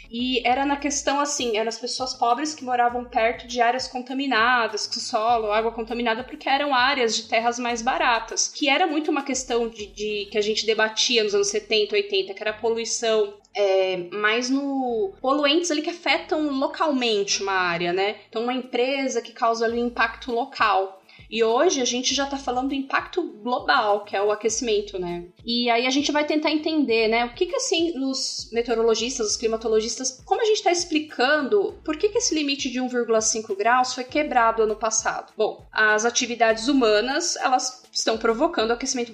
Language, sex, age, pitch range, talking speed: Portuguese, female, 20-39, 225-285 Hz, 185 wpm